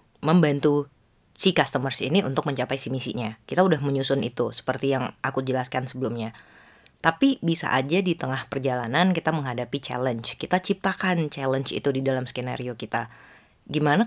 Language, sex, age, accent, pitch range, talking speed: Indonesian, female, 20-39, native, 130-175 Hz, 150 wpm